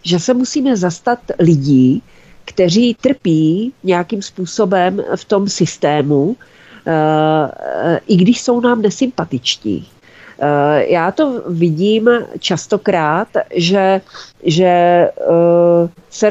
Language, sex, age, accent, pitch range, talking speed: Czech, female, 40-59, native, 155-185 Hz, 90 wpm